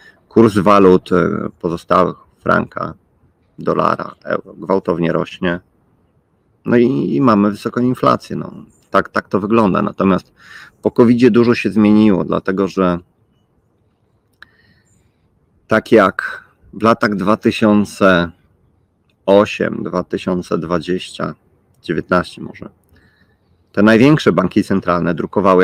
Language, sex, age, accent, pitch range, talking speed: Polish, male, 40-59, native, 90-110 Hz, 95 wpm